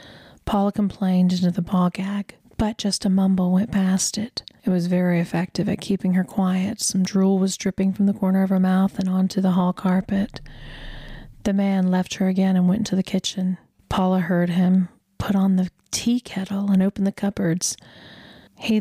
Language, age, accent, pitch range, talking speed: English, 30-49, American, 185-200 Hz, 190 wpm